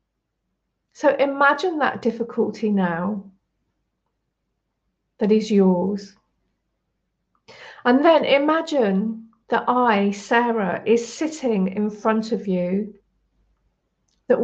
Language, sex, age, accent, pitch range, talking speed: English, female, 40-59, British, 210-260 Hz, 85 wpm